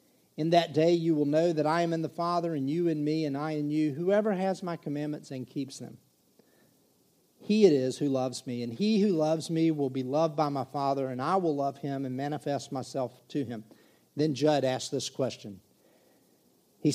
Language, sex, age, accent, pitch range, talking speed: English, male, 50-69, American, 140-185 Hz, 210 wpm